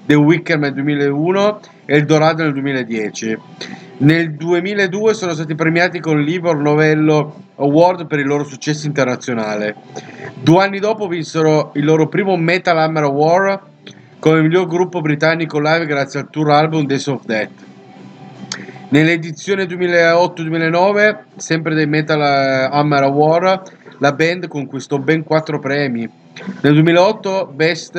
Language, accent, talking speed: Italian, native, 130 wpm